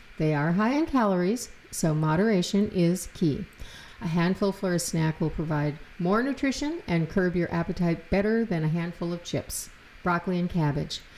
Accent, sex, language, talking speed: American, female, English, 165 wpm